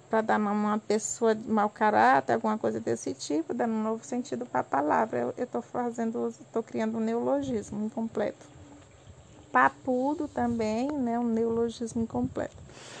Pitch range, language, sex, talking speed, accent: 225-290 Hz, Portuguese, female, 150 wpm, Brazilian